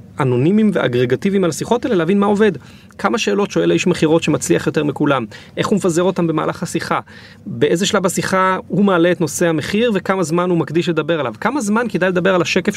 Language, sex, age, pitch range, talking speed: Hebrew, male, 30-49, 140-185 Hz, 195 wpm